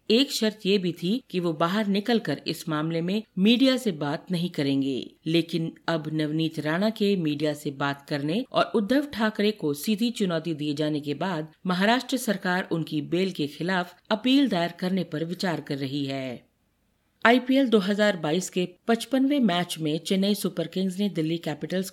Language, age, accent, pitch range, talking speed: Hindi, 50-69, native, 155-210 Hz, 170 wpm